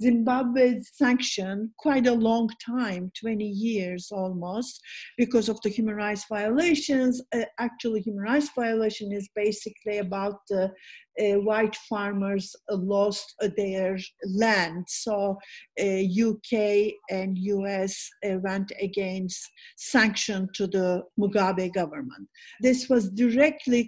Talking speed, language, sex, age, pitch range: 125 wpm, English, female, 50-69, 195-235 Hz